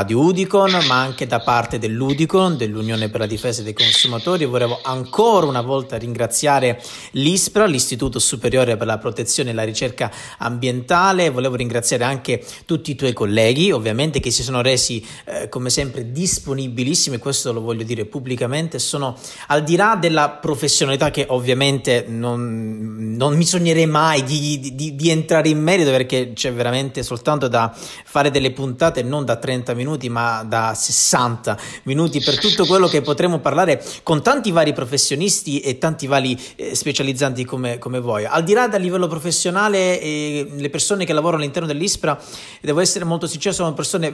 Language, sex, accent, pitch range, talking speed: Italian, male, native, 125-175 Hz, 165 wpm